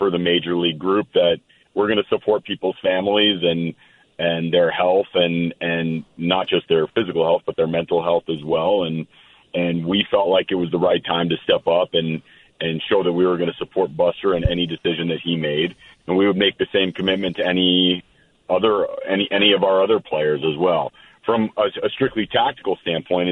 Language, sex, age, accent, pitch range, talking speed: English, male, 40-59, American, 85-95 Hz, 210 wpm